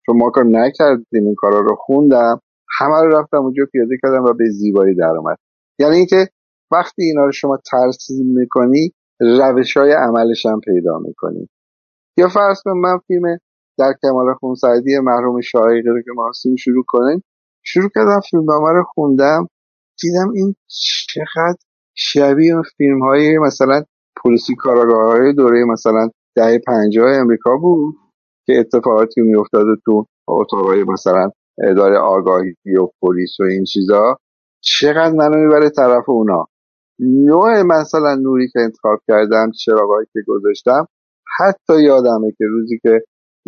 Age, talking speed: 50-69, 140 wpm